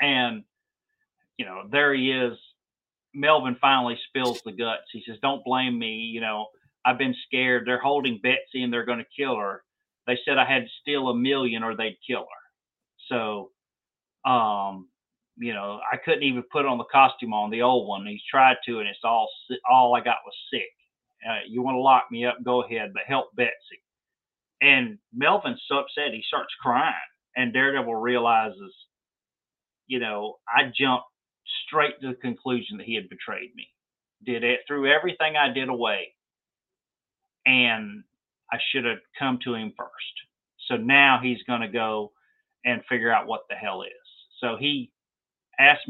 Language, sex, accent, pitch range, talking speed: English, male, American, 115-140 Hz, 175 wpm